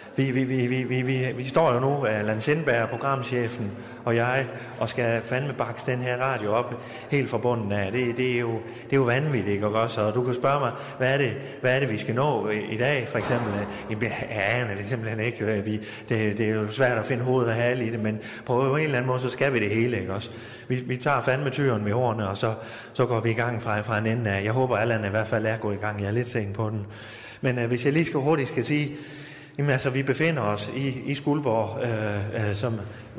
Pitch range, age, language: 105-130 Hz, 30-49, Danish